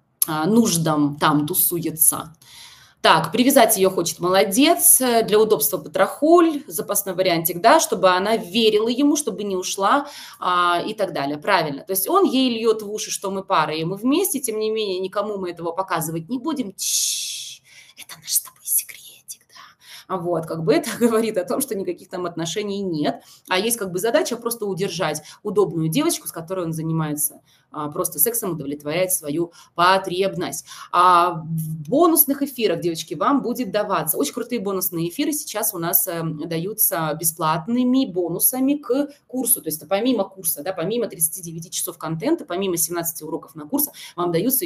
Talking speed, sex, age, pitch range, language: 165 wpm, female, 20-39, 165-230 Hz, Russian